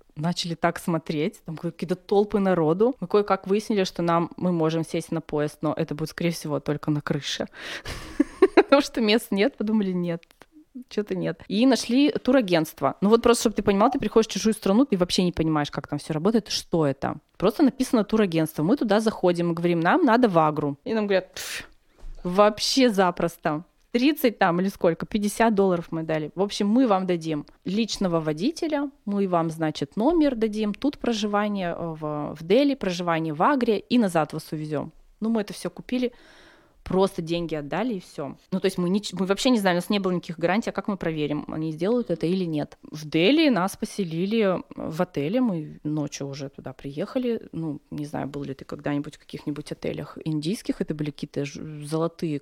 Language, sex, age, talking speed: Russian, female, 20-39, 190 wpm